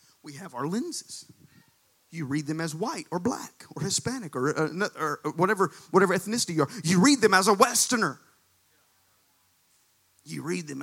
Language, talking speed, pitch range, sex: English, 165 wpm, 120-180 Hz, male